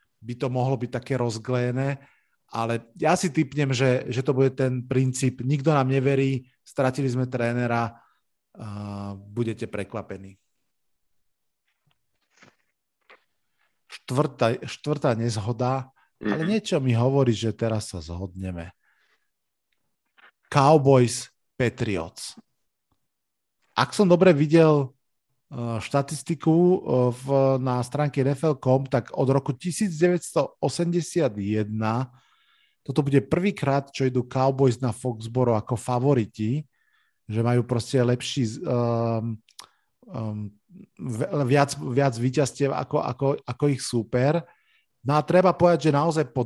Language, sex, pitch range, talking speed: Slovak, male, 120-140 Hz, 105 wpm